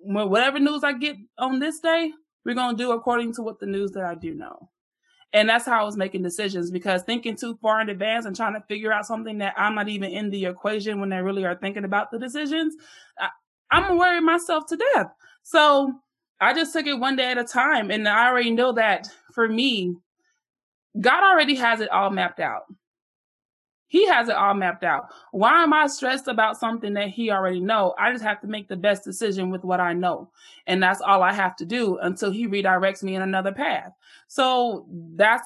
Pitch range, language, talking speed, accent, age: 200-265 Hz, English, 215 wpm, American, 20-39